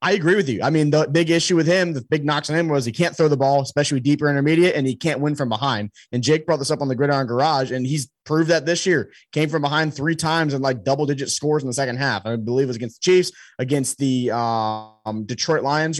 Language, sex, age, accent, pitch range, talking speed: English, male, 20-39, American, 125-150 Hz, 270 wpm